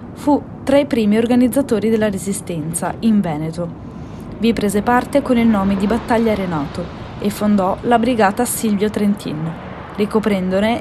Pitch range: 185-235 Hz